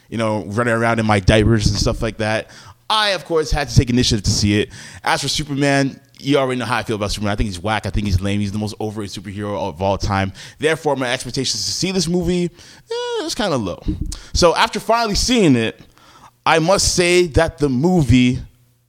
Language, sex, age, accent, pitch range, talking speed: English, male, 20-39, American, 110-150 Hz, 225 wpm